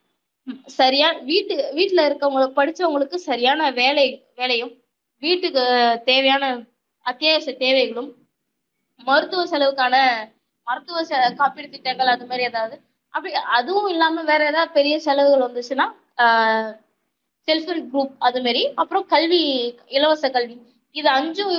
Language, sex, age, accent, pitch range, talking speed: Tamil, female, 20-39, native, 245-305 Hz, 105 wpm